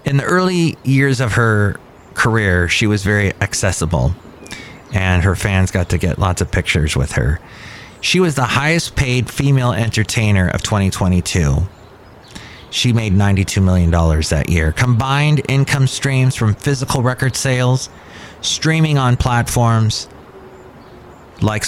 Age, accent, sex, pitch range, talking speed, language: 30-49, American, male, 95-130 Hz, 135 wpm, English